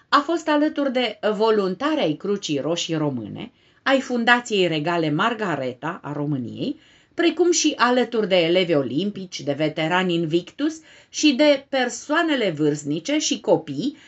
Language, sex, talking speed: Romanian, female, 130 wpm